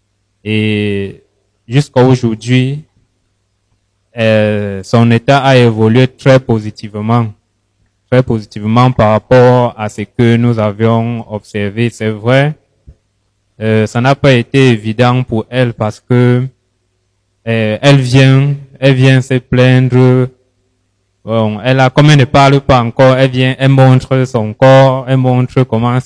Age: 20-39